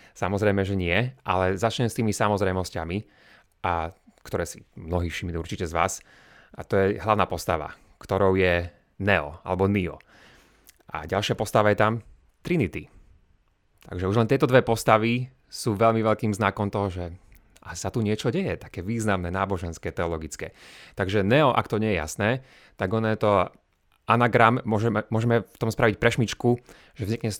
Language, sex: Slovak, male